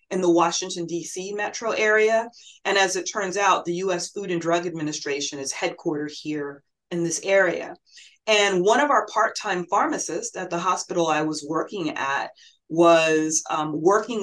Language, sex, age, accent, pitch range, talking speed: English, female, 30-49, American, 165-205 Hz, 165 wpm